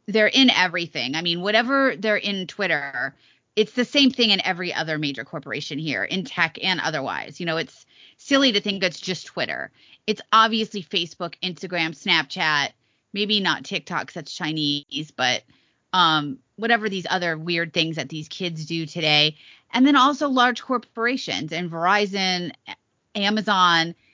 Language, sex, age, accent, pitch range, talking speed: English, female, 30-49, American, 165-215 Hz, 155 wpm